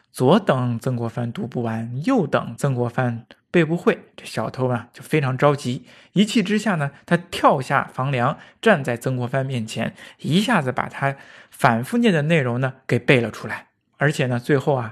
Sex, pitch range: male, 125-170 Hz